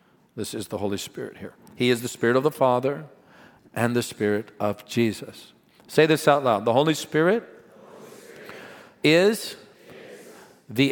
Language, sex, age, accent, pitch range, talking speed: English, male, 50-69, American, 130-180 Hz, 150 wpm